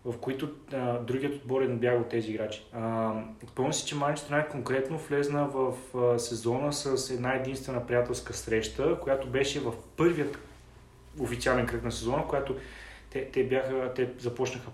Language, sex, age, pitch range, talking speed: Bulgarian, male, 20-39, 115-140 Hz, 160 wpm